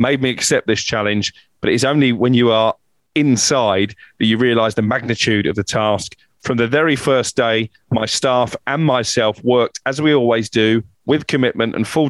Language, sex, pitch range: English, male, 110-130 Hz